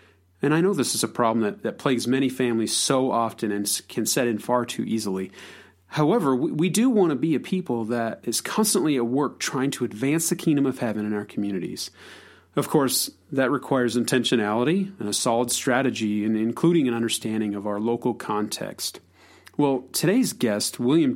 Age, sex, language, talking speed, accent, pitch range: 40-59, male, English, 190 wpm, American, 115-145 Hz